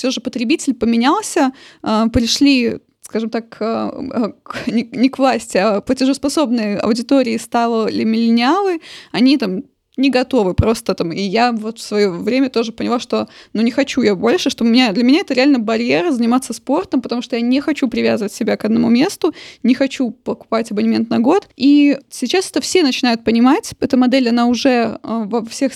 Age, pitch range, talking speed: 20-39, 230-275 Hz, 170 wpm